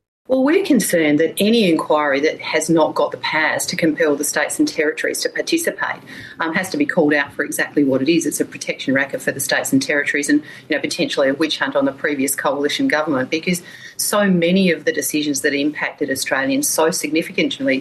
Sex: female